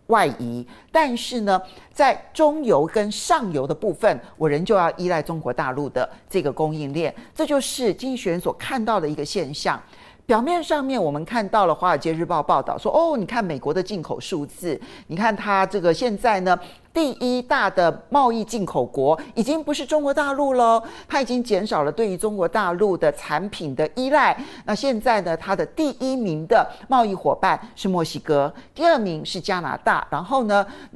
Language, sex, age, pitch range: Chinese, male, 50-69, 165-250 Hz